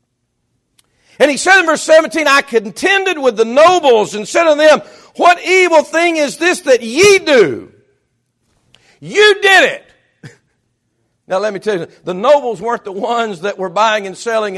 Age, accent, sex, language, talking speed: 50-69, American, male, English, 170 wpm